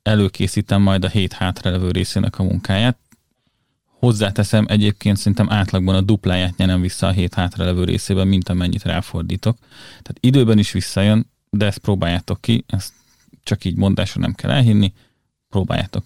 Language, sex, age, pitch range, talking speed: Hungarian, male, 30-49, 95-115 Hz, 140 wpm